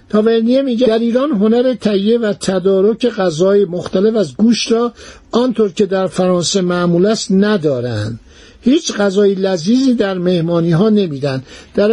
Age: 60-79